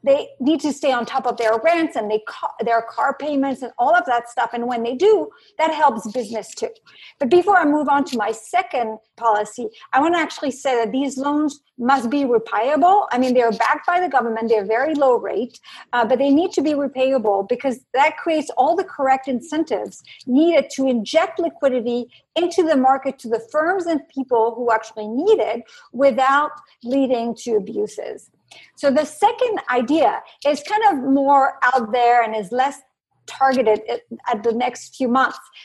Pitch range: 230-290 Hz